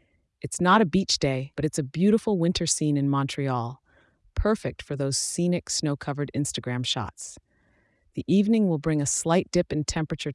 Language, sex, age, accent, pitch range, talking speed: English, female, 30-49, American, 130-165 Hz, 170 wpm